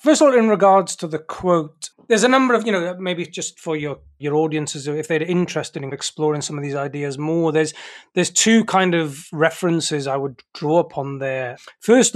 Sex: male